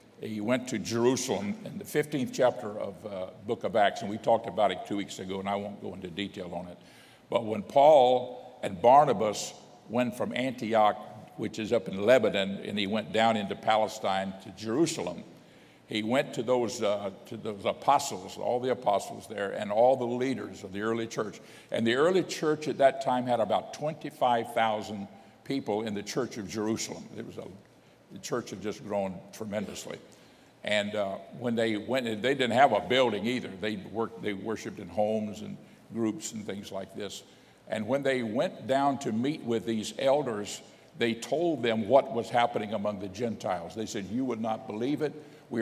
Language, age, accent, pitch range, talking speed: English, 60-79, American, 105-125 Hz, 185 wpm